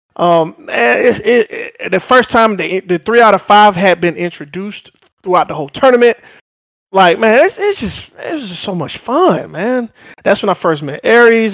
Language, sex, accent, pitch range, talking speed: English, male, American, 150-200 Hz, 205 wpm